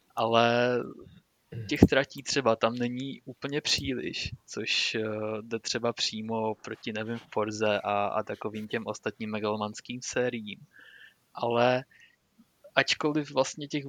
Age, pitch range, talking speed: 20-39, 110-135 Hz, 110 wpm